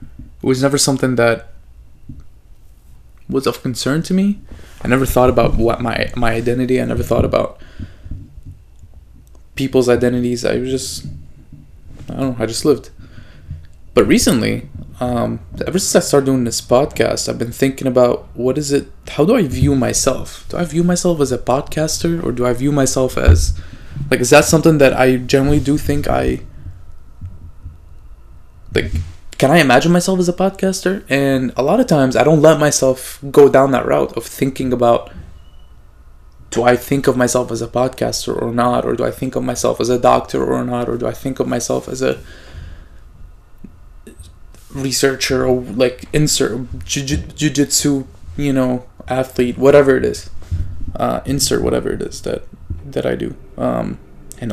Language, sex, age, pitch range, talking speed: English, male, 20-39, 85-140 Hz, 165 wpm